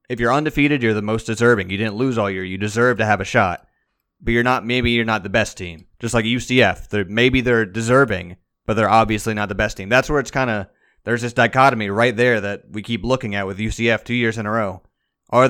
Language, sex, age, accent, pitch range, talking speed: English, male, 30-49, American, 105-125 Hz, 250 wpm